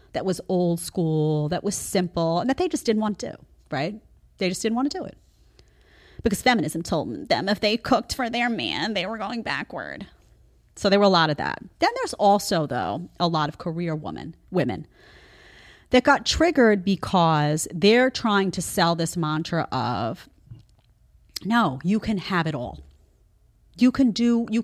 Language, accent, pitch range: English, American, 155-215 Hz